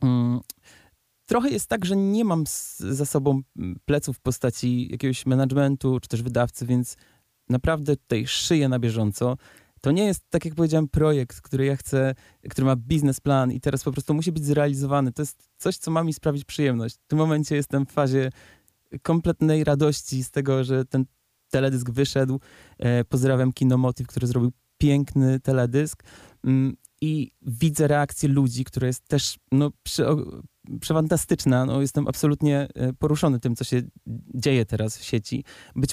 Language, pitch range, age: Polish, 125-145 Hz, 20-39